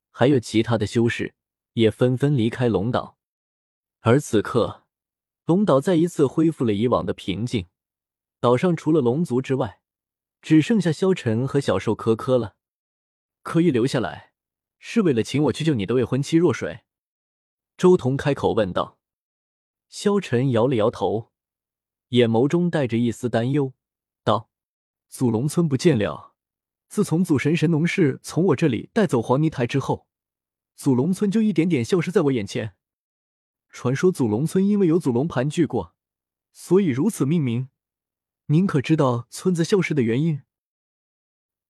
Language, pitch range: Chinese, 115-165 Hz